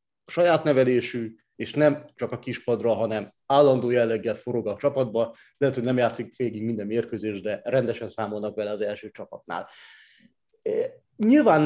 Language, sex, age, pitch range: Hungarian, male, 30-49, 115-140 Hz